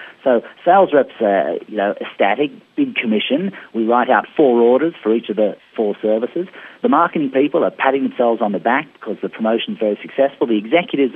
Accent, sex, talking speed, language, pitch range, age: Australian, male, 190 wpm, English, 115-170 Hz, 40-59